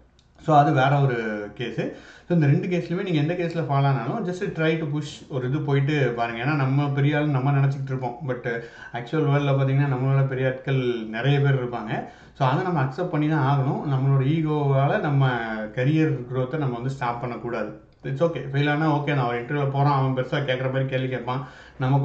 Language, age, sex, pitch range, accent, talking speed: Tamil, 30-49, male, 120-145 Hz, native, 200 wpm